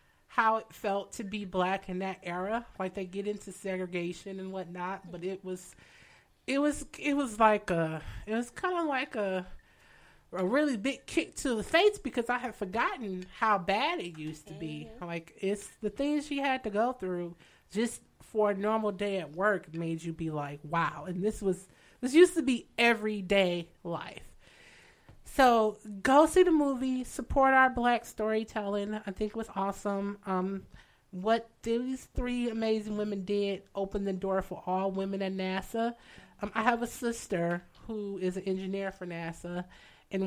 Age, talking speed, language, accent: 30-49, 175 wpm, English, American